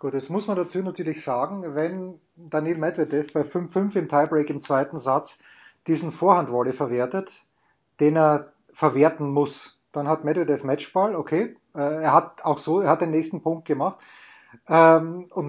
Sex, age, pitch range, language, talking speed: male, 30-49, 145-175 Hz, German, 155 wpm